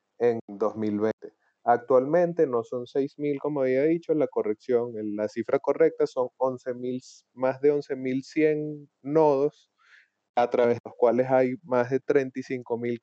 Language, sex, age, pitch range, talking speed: Spanish, male, 30-49, 120-145 Hz, 135 wpm